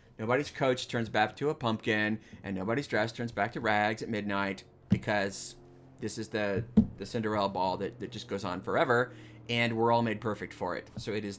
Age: 30-49